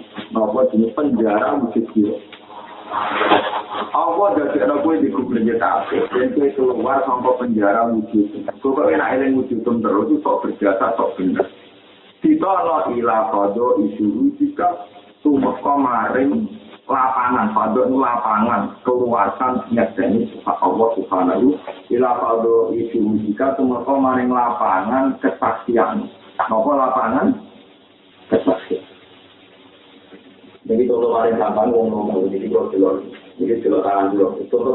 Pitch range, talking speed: 100-135 Hz, 75 wpm